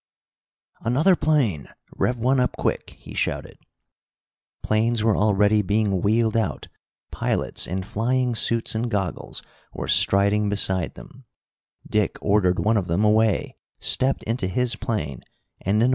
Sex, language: male, English